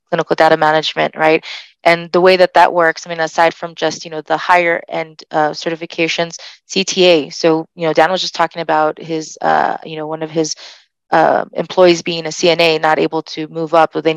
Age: 20-39